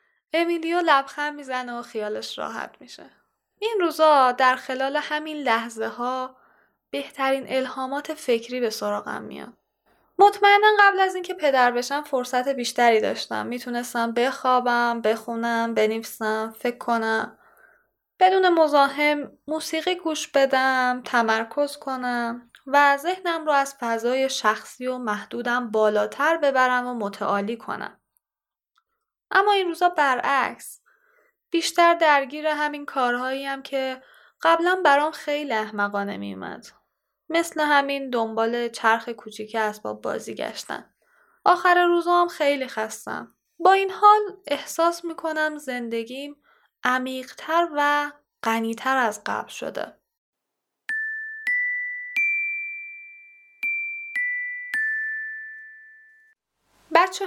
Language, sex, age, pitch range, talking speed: Persian, female, 10-29, 240-355 Hz, 100 wpm